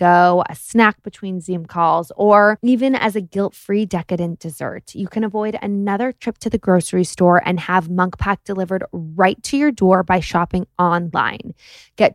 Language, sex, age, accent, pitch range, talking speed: English, female, 20-39, American, 180-220 Hz, 175 wpm